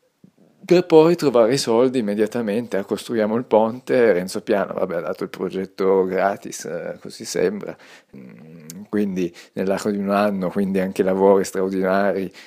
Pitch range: 100-145 Hz